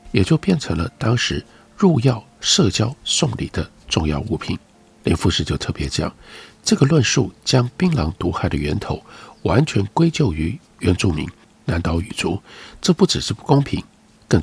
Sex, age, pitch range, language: male, 50-69, 80-135 Hz, Chinese